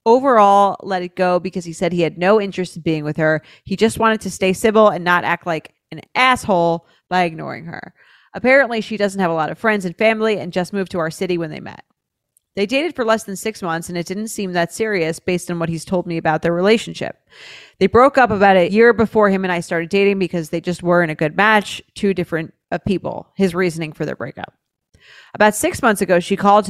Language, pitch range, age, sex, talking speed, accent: English, 170-205 Hz, 30-49, female, 235 wpm, American